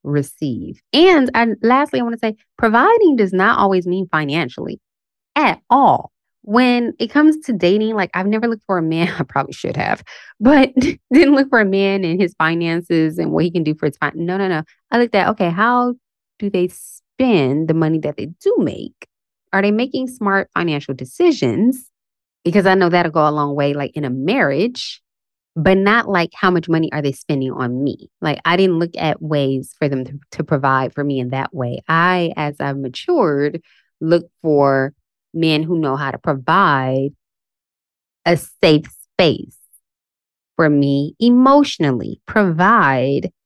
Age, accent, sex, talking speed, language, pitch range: 20-39, American, female, 180 wpm, English, 145-210 Hz